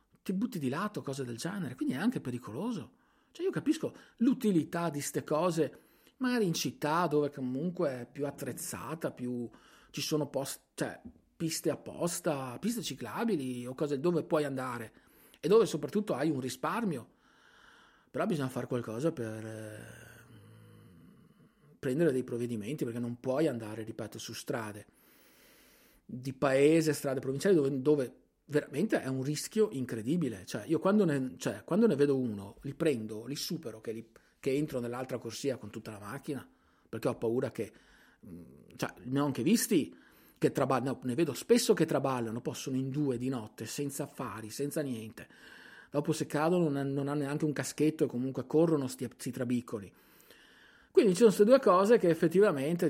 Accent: native